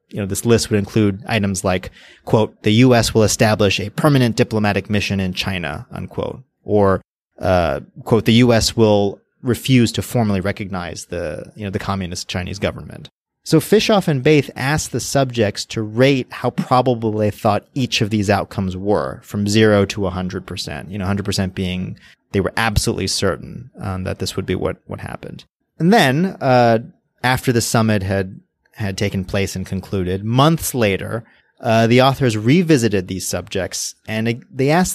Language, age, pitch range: English, 30-49, 100-130 Hz